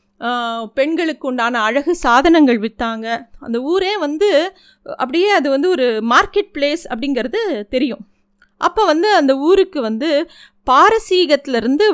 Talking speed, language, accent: 110 wpm, Tamil, native